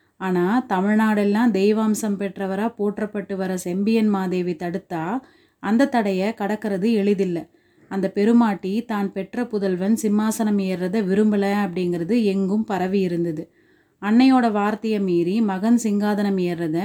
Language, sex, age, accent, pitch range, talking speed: Tamil, female, 30-49, native, 190-220 Hz, 110 wpm